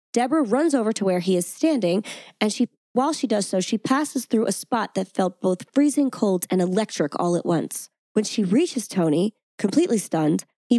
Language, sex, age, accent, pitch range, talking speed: English, female, 20-39, American, 180-255 Hz, 200 wpm